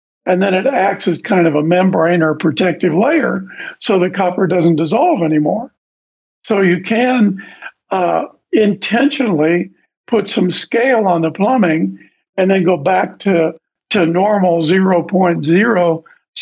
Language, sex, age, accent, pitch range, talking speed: English, male, 50-69, American, 160-195 Hz, 135 wpm